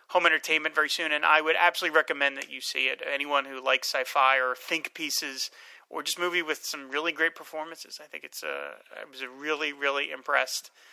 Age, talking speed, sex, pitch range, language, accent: 30-49, 210 wpm, male, 145-195 Hz, English, American